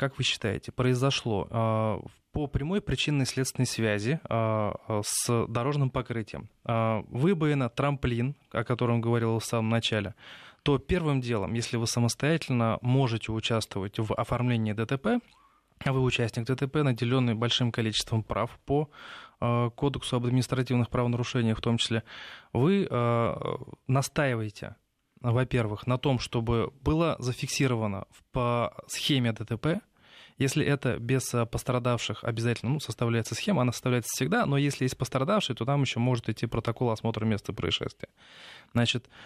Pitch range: 115-130 Hz